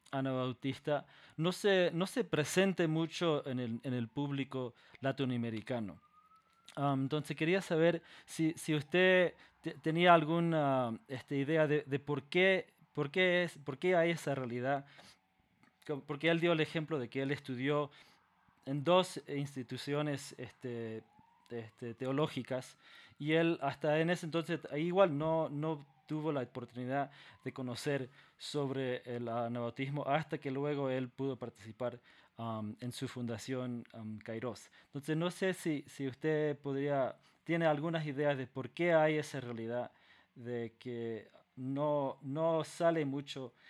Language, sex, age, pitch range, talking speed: Spanish, male, 20-39, 125-160 Hz, 140 wpm